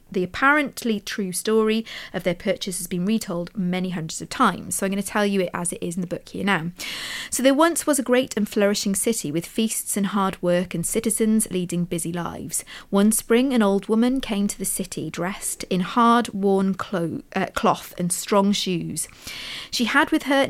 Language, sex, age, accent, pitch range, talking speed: English, female, 40-59, British, 180-235 Hz, 205 wpm